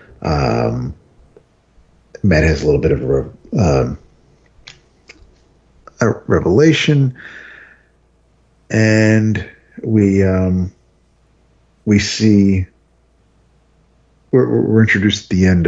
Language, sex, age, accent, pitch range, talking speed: English, male, 50-69, American, 85-110 Hz, 80 wpm